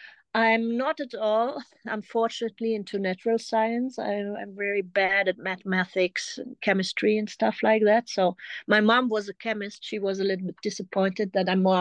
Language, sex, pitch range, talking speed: English, female, 195-230 Hz, 180 wpm